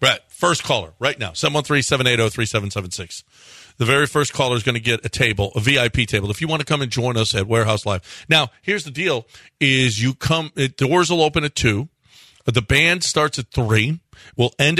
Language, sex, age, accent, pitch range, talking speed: English, male, 40-59, American, 115-155 Hz, 205 wpm